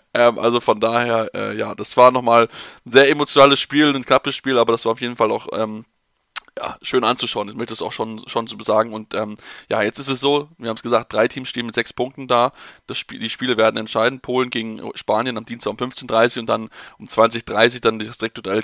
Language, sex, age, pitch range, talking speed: German, male, 20-39, 120-160 Hz, 235 wpm